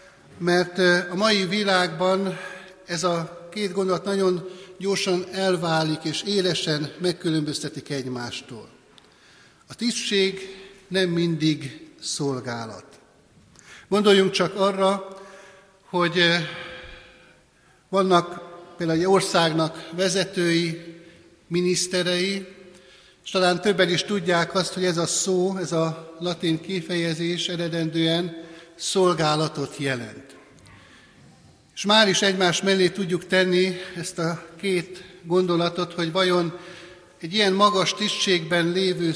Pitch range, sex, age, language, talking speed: 170-190 Hz, male, 60-79, Hungarian, 100 wpm